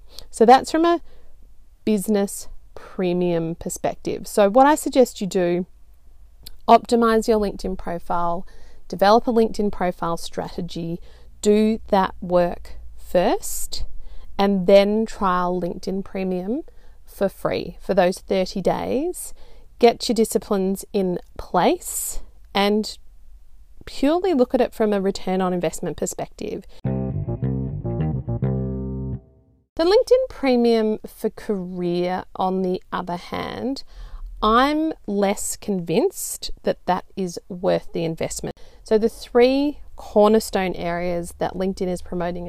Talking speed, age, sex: 115 wpm, 30-49, female